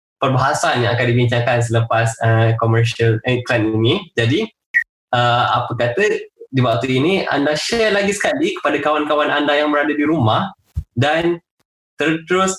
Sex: male